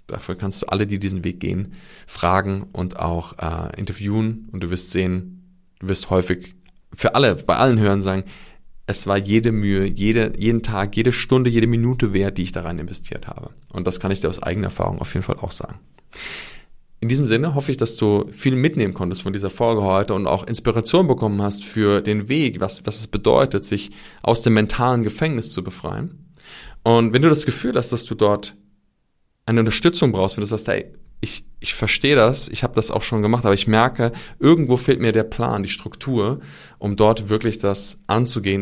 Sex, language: male, German